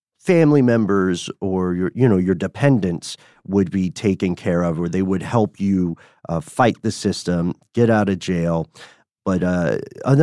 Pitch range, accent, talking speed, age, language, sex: 90-115 Hz, American, 165 wpm, 40-59, English, male